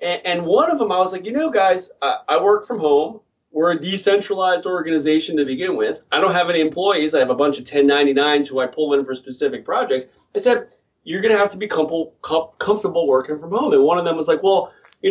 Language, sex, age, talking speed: English, male, 30-49, 235 wpm